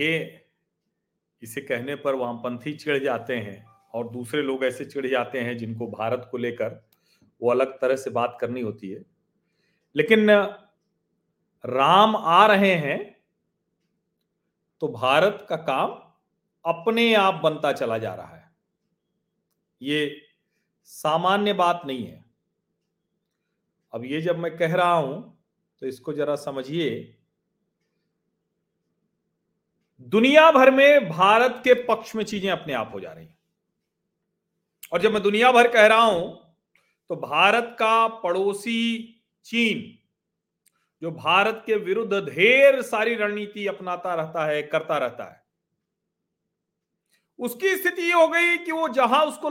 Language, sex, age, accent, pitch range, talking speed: Hindi, male, 40-59, native, 150-240 Hz, 130 wpm